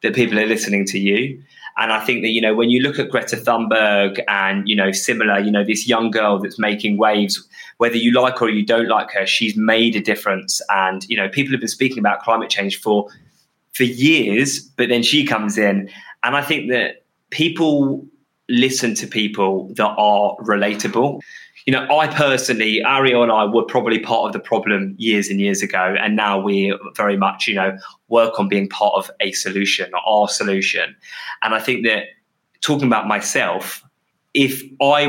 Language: English